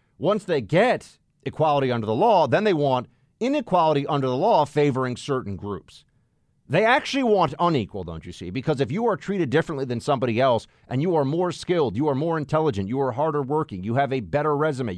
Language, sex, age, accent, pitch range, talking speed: English, male, 40-59, American, 110-150 Hz, 205 wpm